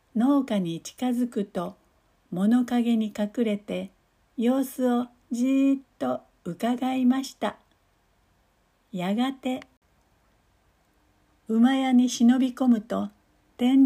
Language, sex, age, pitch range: Japanese, female, 60-79, 195-255 Hz